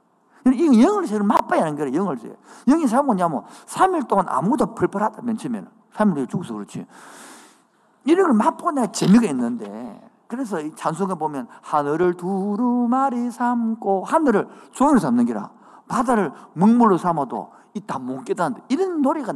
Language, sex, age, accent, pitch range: Korean, male, 50-69, native, 180-250 Hz